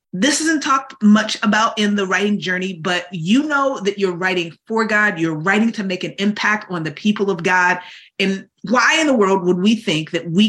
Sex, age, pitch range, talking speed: female, 30-49, 180-240 Hz, 215 wpm